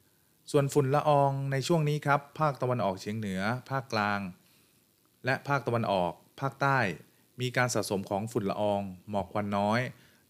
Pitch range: 100-125 Hz